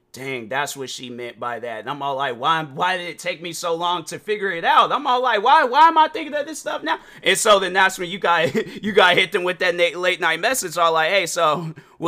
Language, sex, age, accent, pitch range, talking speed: English, male, 30-49, American, 145-200 Hz, 285 wpm